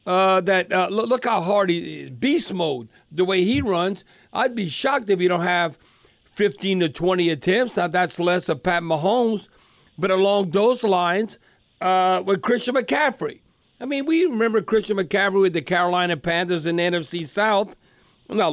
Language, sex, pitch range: English, male, 175-215 Hz